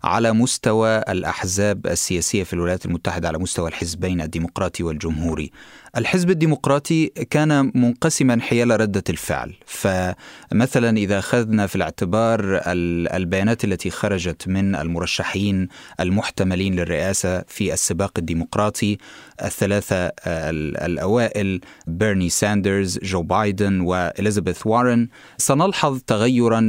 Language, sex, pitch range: Arabic, male, 95-120 Hz